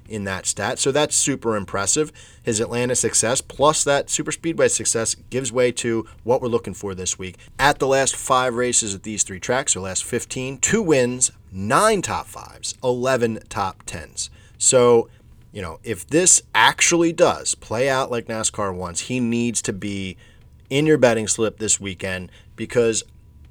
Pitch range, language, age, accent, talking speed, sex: 105-125 Hz, English, 30-49, American, 170 wpm, male